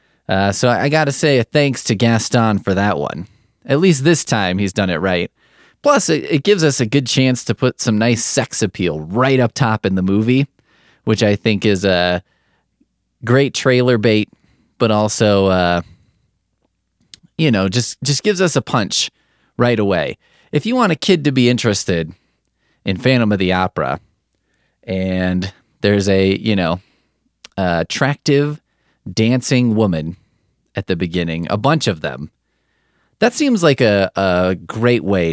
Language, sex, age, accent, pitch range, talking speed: English, male, 30-49, American, 100-135 Hz, 165 wpm